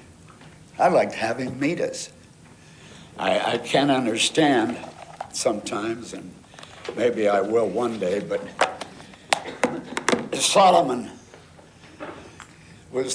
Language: English